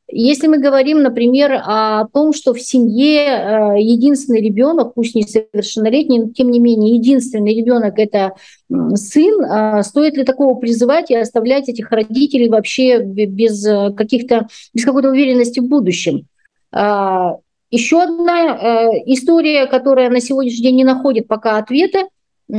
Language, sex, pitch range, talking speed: Russian, female, 225-275 Hz, 130 wpm